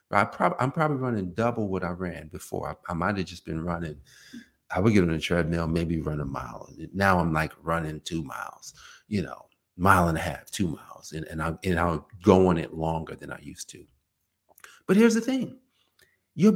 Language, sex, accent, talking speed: English, male, American, 195 wpm